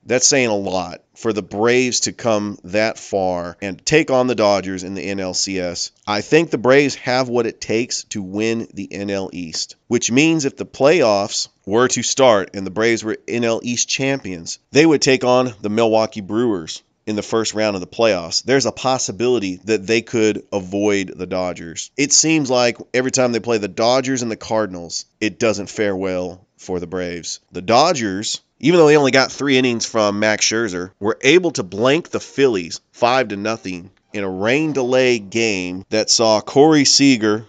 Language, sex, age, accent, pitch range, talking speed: English, male, 30-49, American, 100-125 Hz, 190 wpm